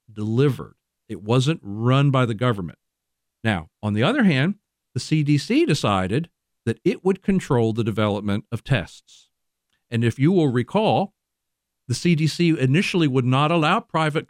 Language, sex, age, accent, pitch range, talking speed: English, male, 50-69, American, 110-150 Hz, 145 wpm